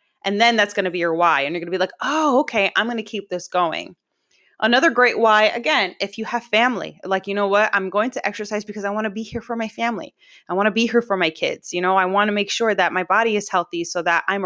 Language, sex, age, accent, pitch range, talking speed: English, female, 20-39, American, 180-230 Hz, 290 wpm